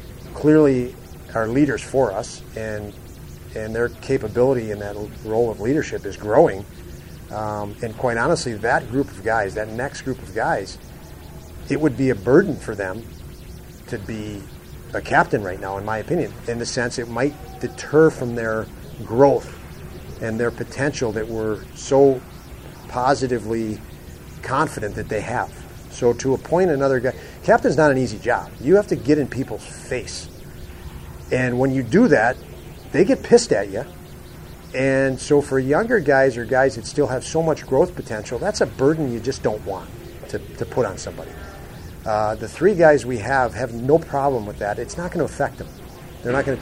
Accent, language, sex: American, English, male